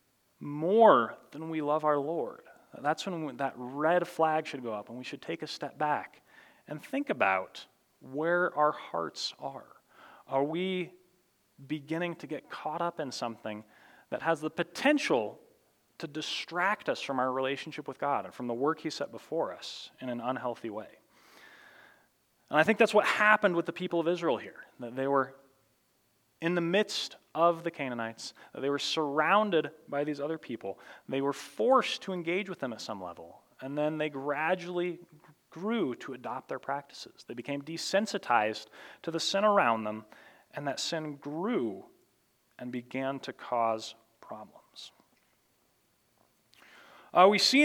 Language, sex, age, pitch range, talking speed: English, male, 30-49, 135-185 Hz, 160 wpm